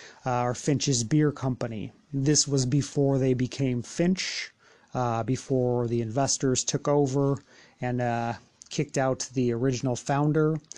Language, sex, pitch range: English, male, 125-145 Hz